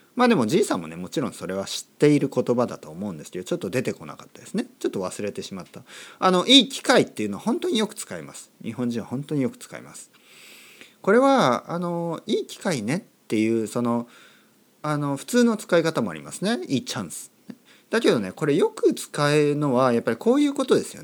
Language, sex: Japanese, male